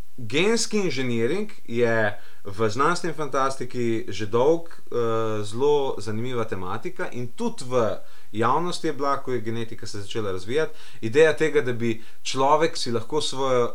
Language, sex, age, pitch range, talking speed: English, male, 30-49, 105-140 Hz, 140 wpm